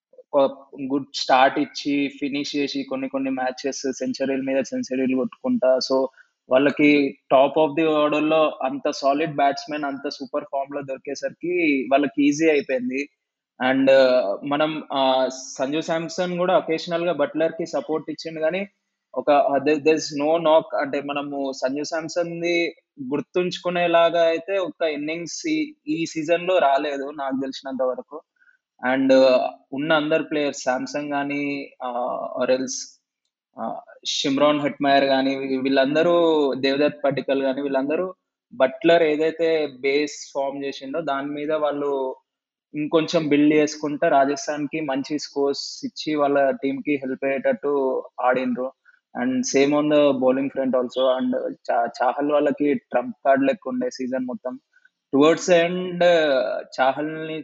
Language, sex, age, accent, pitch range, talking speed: Telugu, male, 20-39, native, 135-160 Hz, 120 wpm